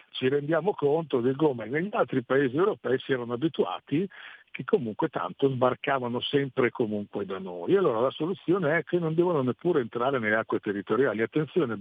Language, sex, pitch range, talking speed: Italian, male, 110-145 Hz, 175 wpm